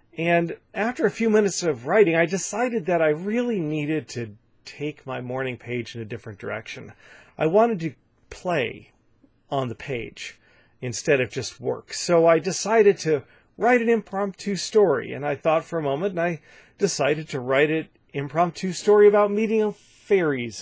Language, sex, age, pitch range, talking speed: English, male, 40-59, 130-185 Hz, 170 wpm